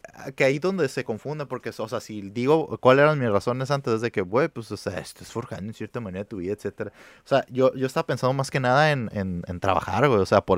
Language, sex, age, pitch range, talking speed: Spanish, male, 20-39, 105-135 Hz, 270 wpm